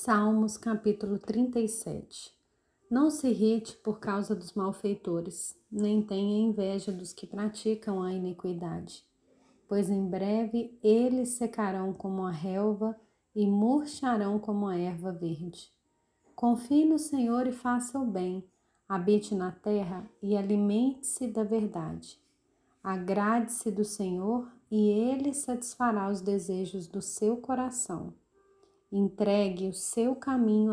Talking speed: 120 wpm